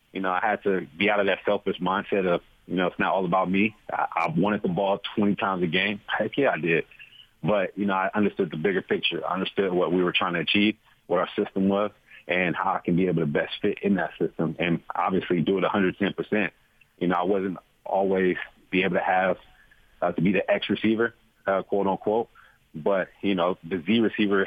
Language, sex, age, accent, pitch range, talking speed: English, male, 30-49, American, 90-110 Hz, 225 wpm